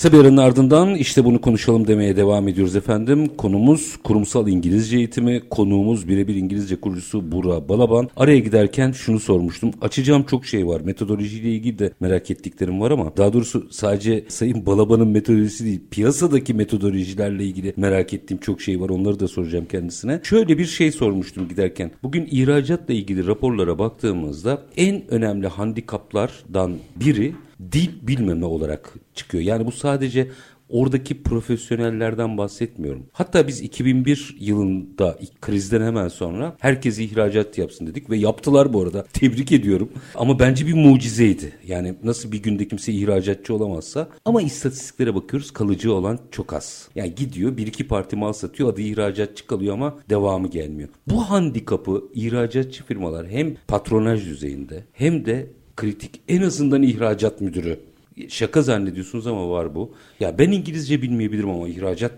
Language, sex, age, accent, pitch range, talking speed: Turkish, male, 50-69, native, 95-130 Hz, 145 wpm